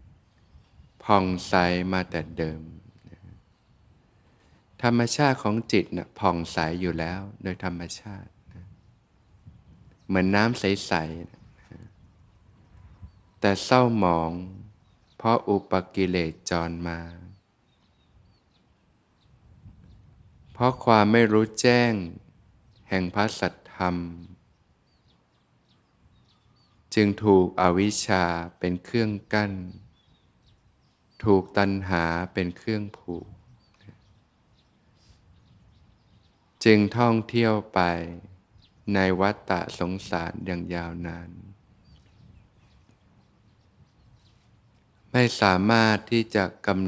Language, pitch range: Thai, 90-110 Hz